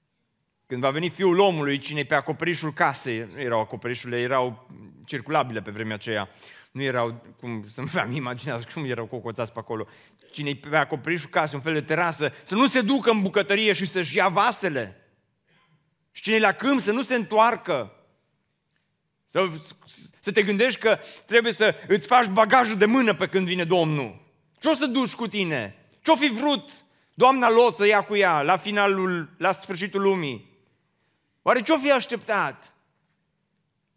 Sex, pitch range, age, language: male, 135-185 Hz, 30-49, Romanian